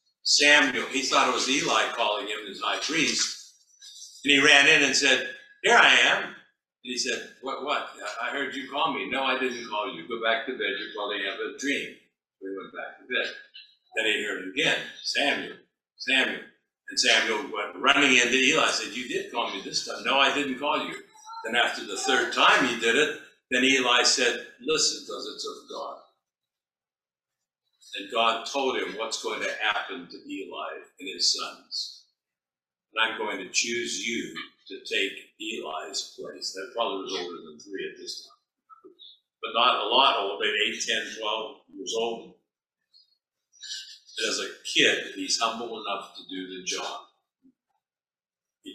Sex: male